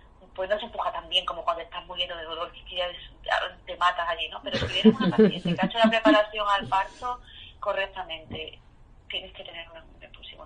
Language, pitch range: Spanish, 160-195 Hz